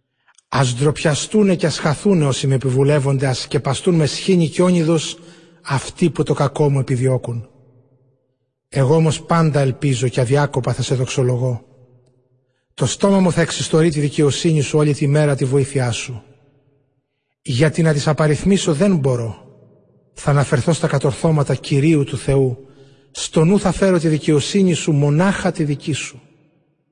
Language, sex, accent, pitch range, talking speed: Greek, male, native, 135-165 Hz, 145 wpm